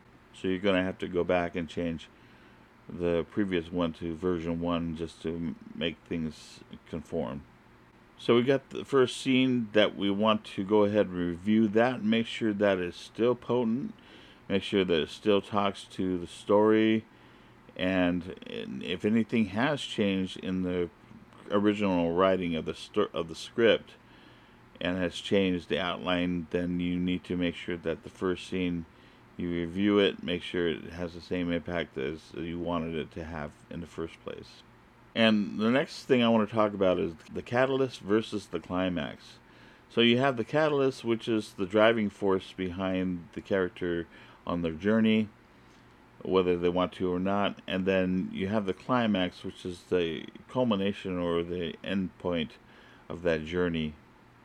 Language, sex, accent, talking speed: English, male, American, 170 wpm